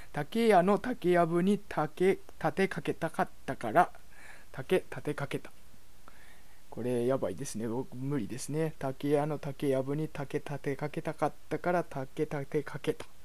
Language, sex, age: Japanese, male, 20-39